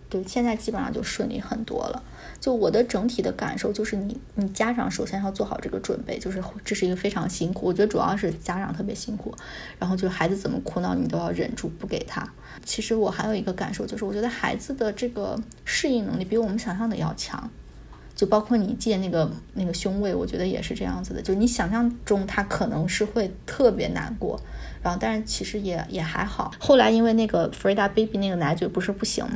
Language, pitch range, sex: Chinese, 190-225 Hz, female